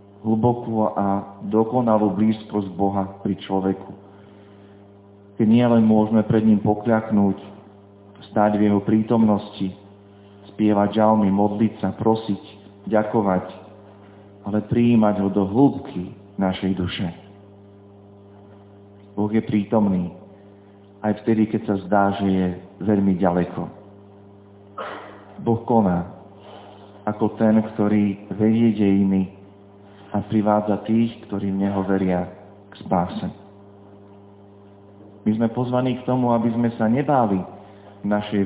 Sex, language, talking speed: male, Slovak, 105 wpm